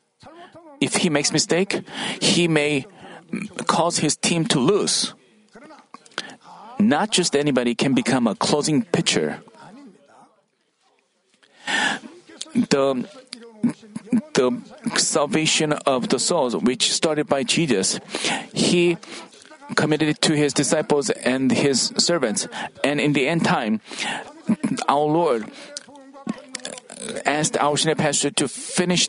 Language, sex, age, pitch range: Korean, male, 40-59, 150-225 Hz